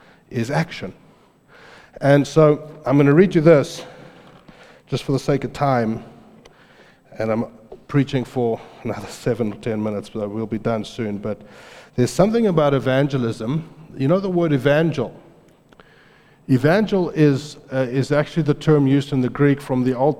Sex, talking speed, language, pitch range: male, 165 wpm, English, 125-150 Hz